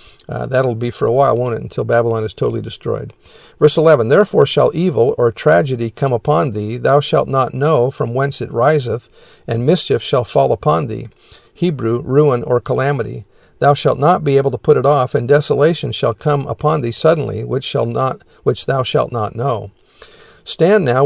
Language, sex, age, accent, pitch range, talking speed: English, male, 50-69, American, 125-150 Hz, 190 wpm